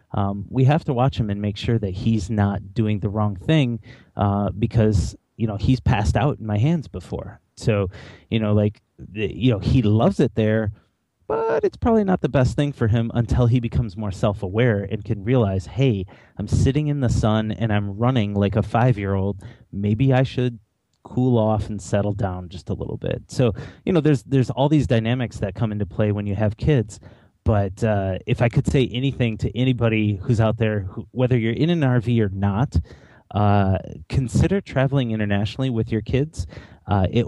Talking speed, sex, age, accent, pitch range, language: 200 wpm, male, 30-49, American, 100-125 Hz, English